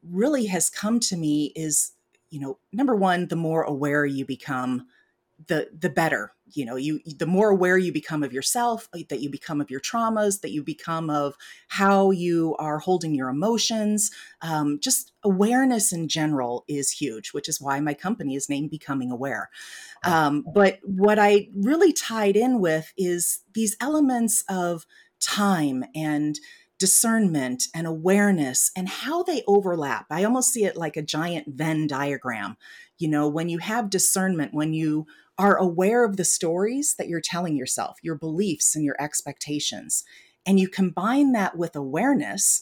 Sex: female